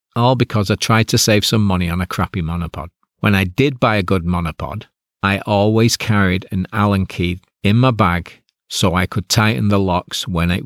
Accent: British